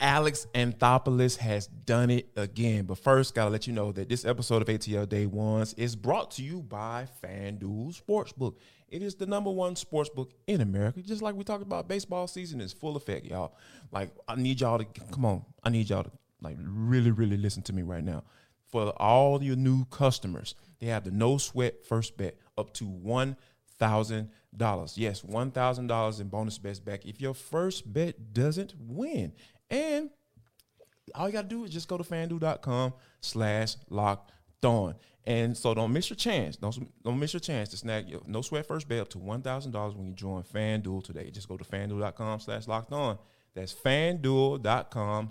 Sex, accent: male, American